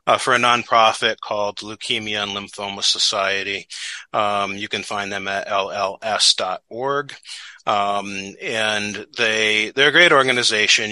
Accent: American